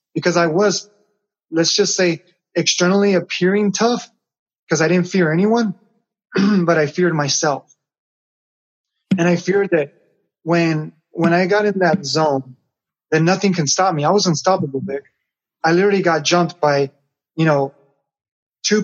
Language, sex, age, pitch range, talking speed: English, male, 20-39, 155-190 Hz, 145 wpm